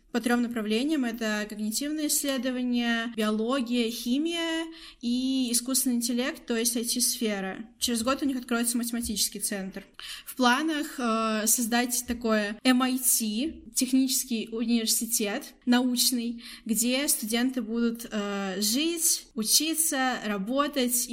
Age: 10-29